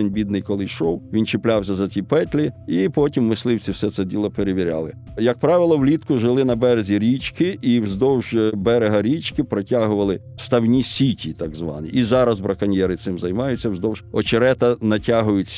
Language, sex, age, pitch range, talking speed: Ukrainian, male, 50-69, 105-135 Hz, 150 wpm